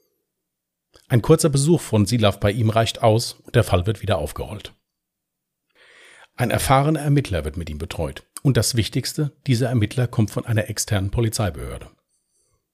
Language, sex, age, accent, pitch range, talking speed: German, male, 40-59, German, 105-140 Hz, 150 wpm